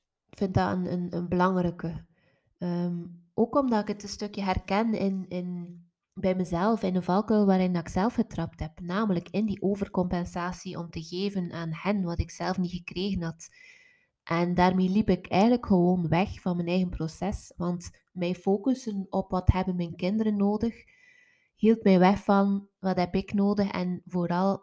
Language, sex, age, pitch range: Dutch, female, 20-39, 175-200 Hz